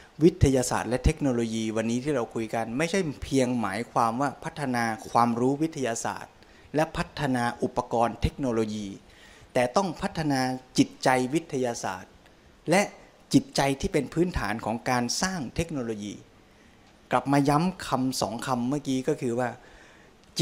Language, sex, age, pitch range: Thai, male, 20-39, 120-145 Hz